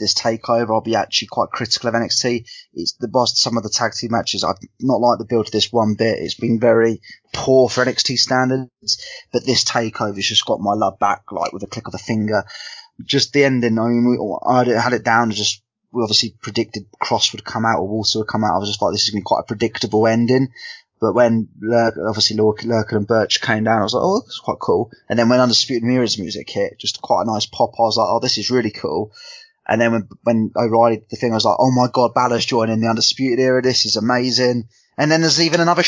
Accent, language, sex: British, English, male